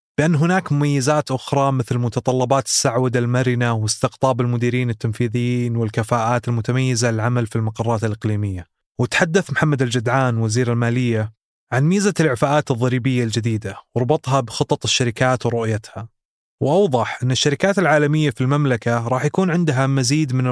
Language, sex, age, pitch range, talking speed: Arabic, male, 20-39, 120-140 Hz, 125 wpm